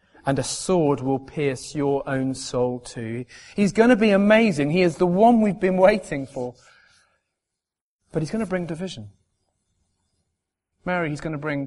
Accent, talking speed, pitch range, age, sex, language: British, 170 wpm, 120-175 Hz, 30-49, male, English